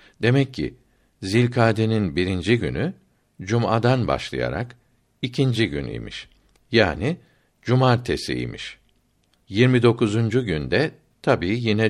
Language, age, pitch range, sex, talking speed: Turkish, 60-79, 95-125 Hz, male, 75 wpm